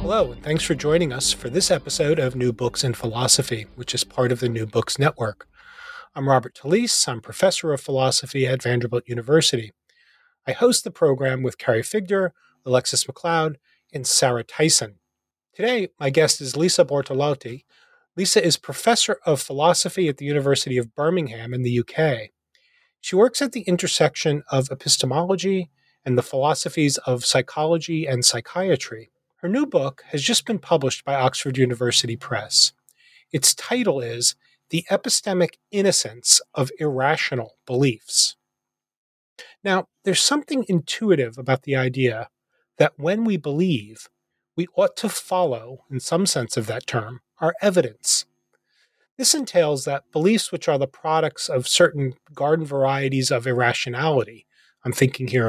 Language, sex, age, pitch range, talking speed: English, male, 30-49, 125-175 Hz, 150 wpm